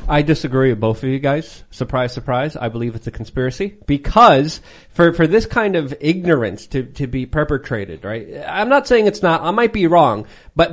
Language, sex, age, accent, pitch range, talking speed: English, male, 30-49, American, 135-185 Hz, 200 wpm